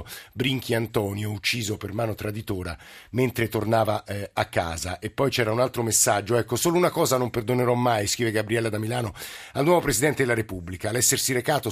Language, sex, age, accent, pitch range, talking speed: Italian, male, 50-69, native, 100-120 Hz, 180 wpm